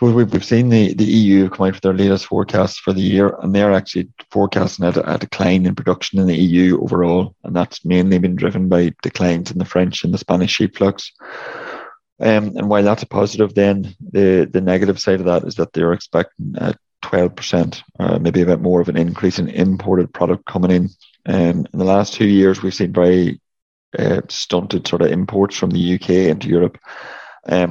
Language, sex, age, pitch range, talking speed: English, male, 30-49, 90-100 Hz, 205 wpm